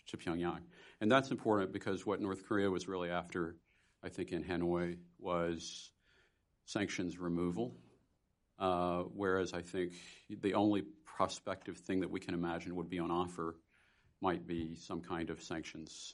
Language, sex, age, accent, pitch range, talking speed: English, male, 50-69, American, 85-100 Hz, 145 wpm